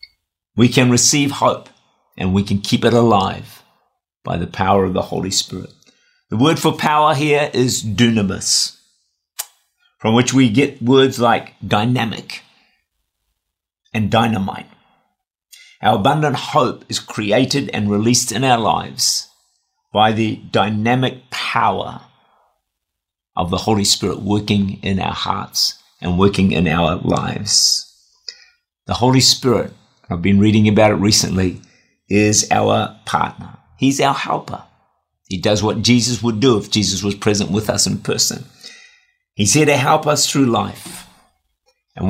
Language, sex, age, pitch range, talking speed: English, male, 50-69, 100-125 Hz, 140 wpm